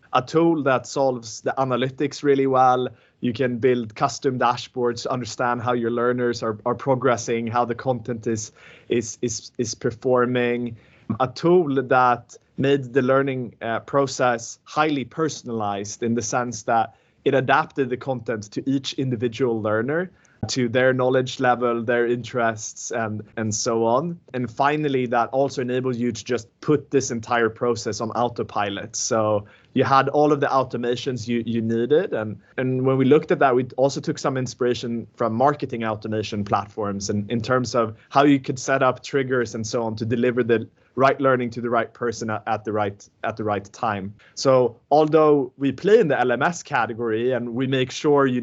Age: 20-39